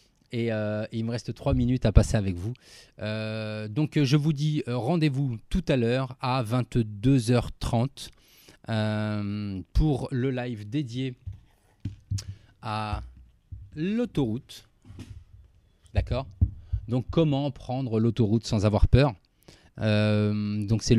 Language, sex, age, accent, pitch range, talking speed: French, male, 30-49, French, 105-140 Hz, 115 wpm